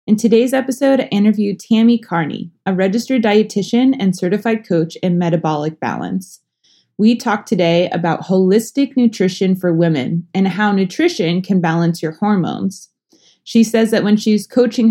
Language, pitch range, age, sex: English, 180-225 Hz, 20-39, female